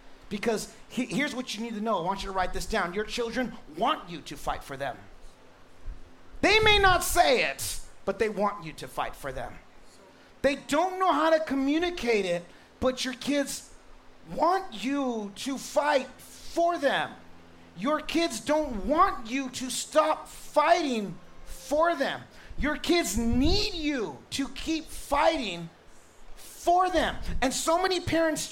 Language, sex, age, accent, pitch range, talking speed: English, male, 40-59, American, 195-315 Hz, 155 wpm